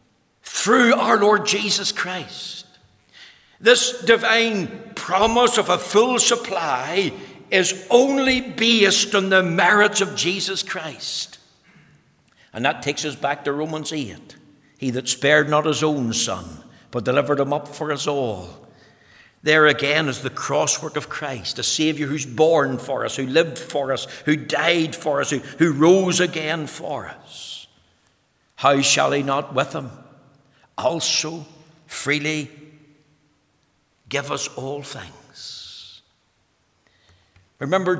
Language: English